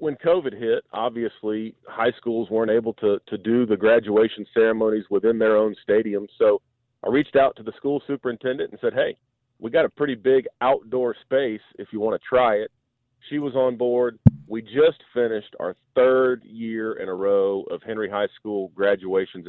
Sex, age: male, 40-59